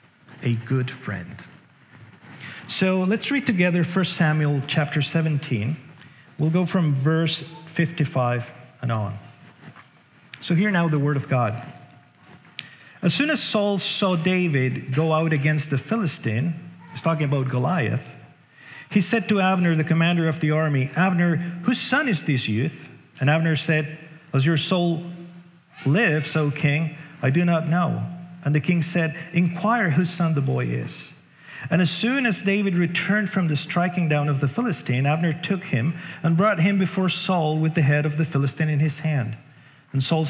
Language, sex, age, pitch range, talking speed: English, male, 40-59, 145-175 Hz, 165 wpm